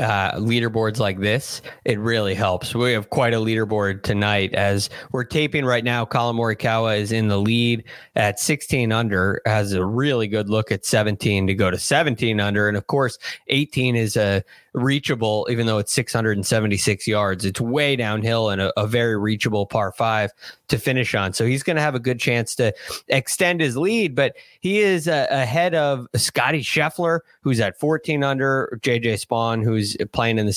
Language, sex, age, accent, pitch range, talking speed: English, male, 20-39, American, 105-130 Hz, 185 wpm